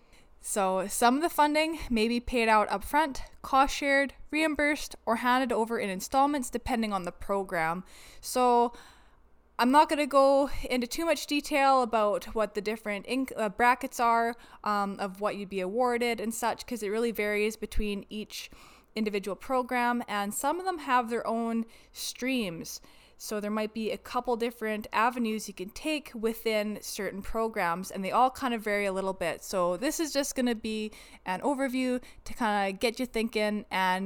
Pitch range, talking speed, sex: 205-255 Hz, 180 wpm, female